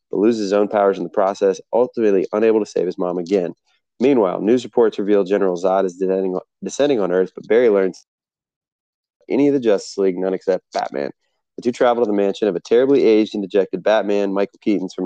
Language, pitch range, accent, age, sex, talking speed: English, 95-110 Hz, American, 30-49, male, 205 wpm